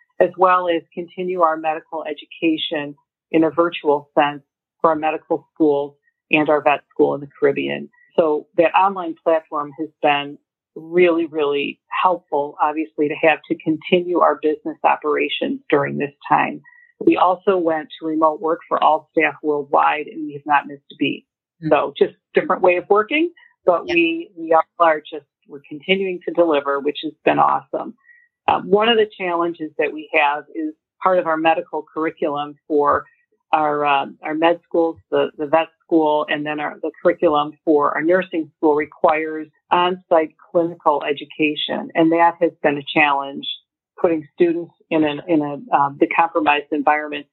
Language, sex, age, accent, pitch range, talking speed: English, female, 40-59, American, 150-180 Hz, 165 wpm